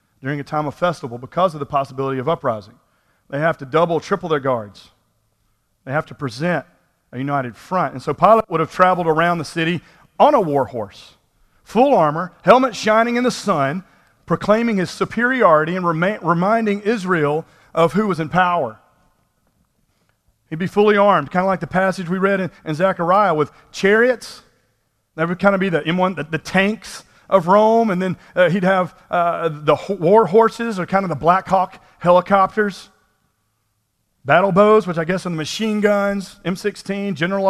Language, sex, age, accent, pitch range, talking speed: English, male, 40-59, American, 135-190 Hz, 180 wpm